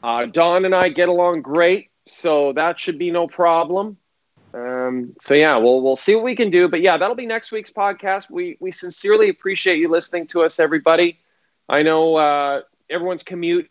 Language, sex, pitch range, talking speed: English, male, 135-180 Hz, 195 wpm